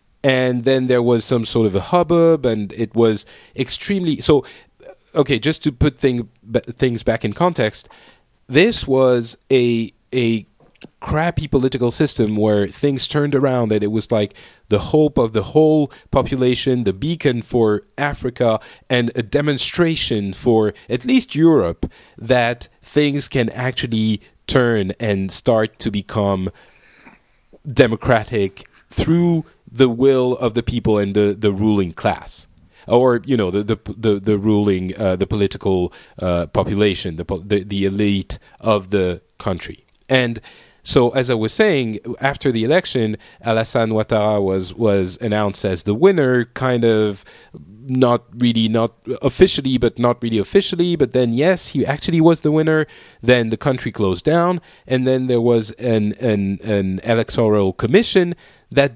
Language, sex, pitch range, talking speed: English, male, 105-135 Hz, 150 wpm